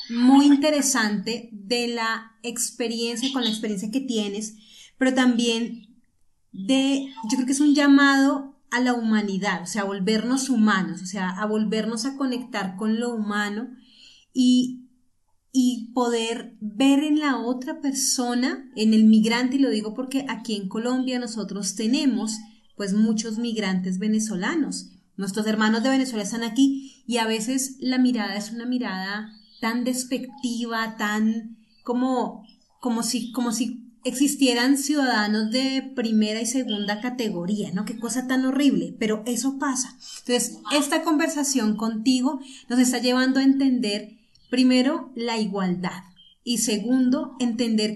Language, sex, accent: Spanish, female, Colombian